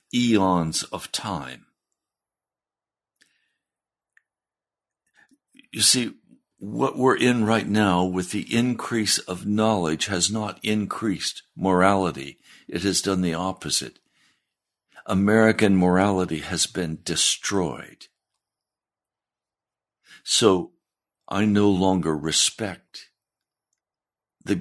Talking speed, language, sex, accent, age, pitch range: 85 wpm, English, male, American, 60-79, 85-110 Hz